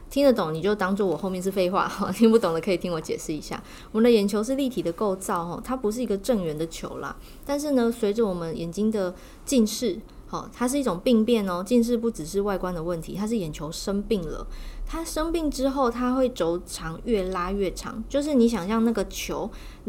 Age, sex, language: 20-39, female, Chinese